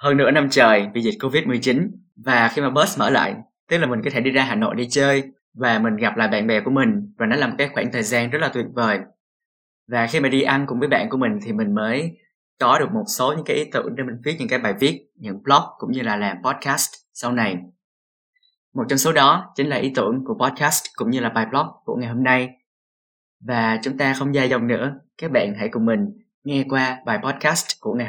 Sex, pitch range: male, 120-165 Hz